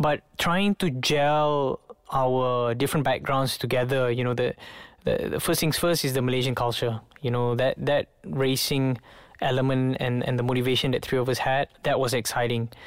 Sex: male